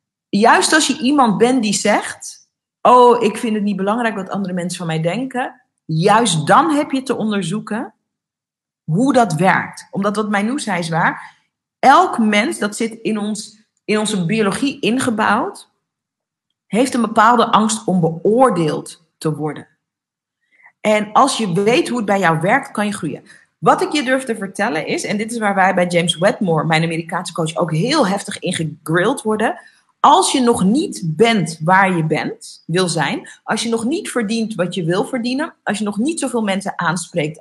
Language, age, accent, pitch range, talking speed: Dutch, 40-59, Dutch, 175-235 Hz, 185 wpm